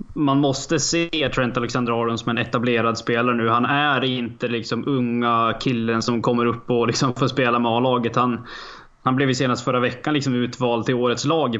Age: 20-39